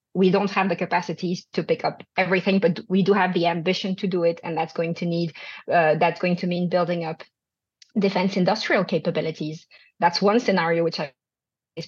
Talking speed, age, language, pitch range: 190 wpm, 30-49, English, 170-200 Hz